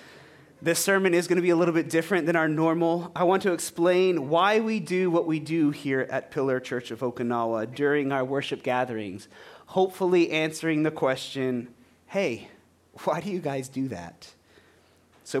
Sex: male